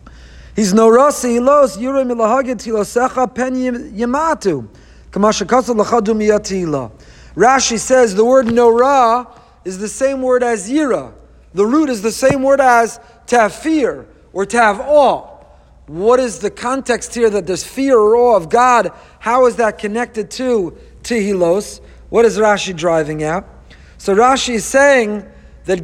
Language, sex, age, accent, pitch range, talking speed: English, male, 40-59, American, 230-295 Hz, 125 wpm